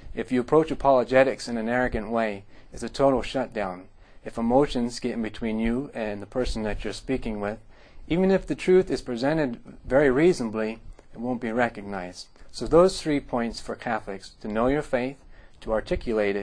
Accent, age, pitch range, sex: American, 30-49, 110-130 Hz, male